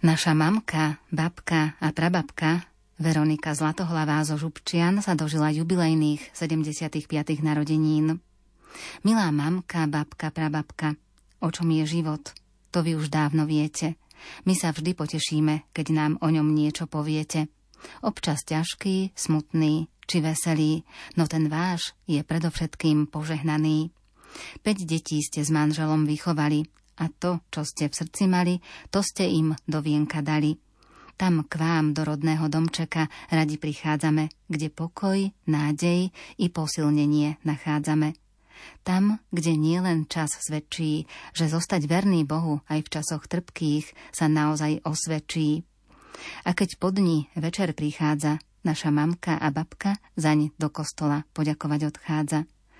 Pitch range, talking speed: 150-170 Hz, 125 wpm